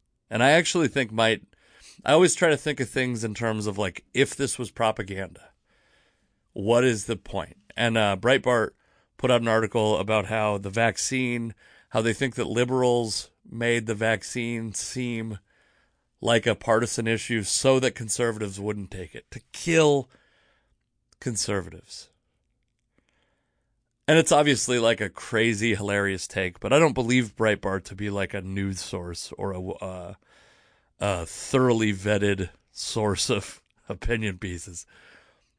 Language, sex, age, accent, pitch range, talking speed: English, male, 30-49, American, 100-120 Hz, 145 wpm